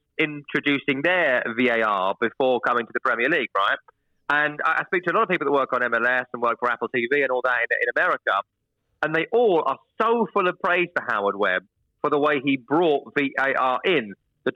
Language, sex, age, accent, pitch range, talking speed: English, male, 30-49, British, 125-160 Hz, 215 wpm